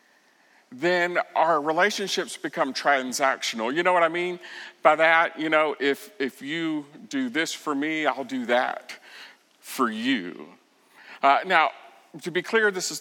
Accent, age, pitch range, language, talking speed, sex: American, 50-69, 155-215 Hz, English, 150 wpm, male